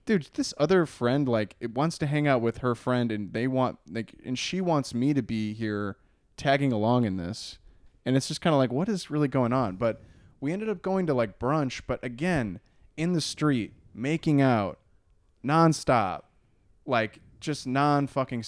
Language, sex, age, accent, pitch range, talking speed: English, male, 20-39, American, 100-130 Hz, 190 wpm